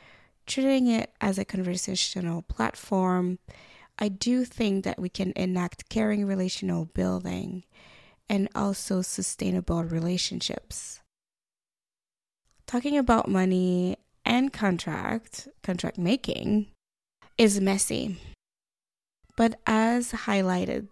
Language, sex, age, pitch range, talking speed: English, female, 20-39, 180-215 Hz, 90 wpm